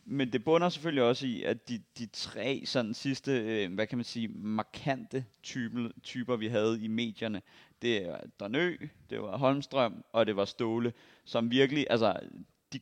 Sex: male